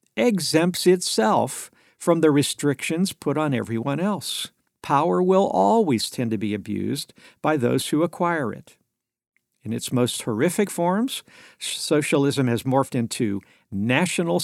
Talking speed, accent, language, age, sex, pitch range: 130 wpm, American, English, 60-79, male, 115-170 Hz